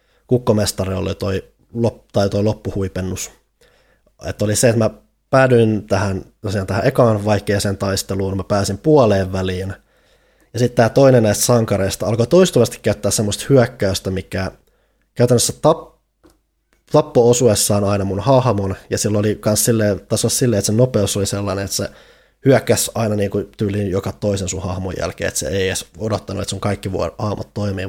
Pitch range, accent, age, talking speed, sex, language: 95-115 Hz, native, 20-39, 155 wpm, male, Finnish